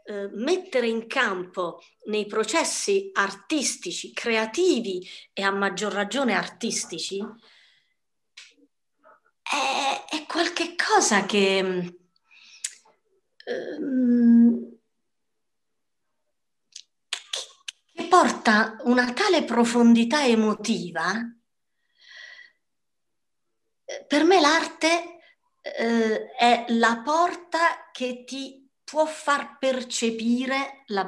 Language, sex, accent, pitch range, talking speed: English, female, Italian, 195-305 Hz, 70 wpm